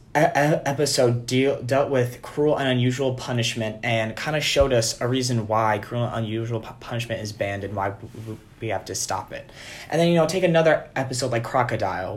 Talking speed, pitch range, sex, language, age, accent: 180 wpm, 115-135 Hz, male, English, 20-39, American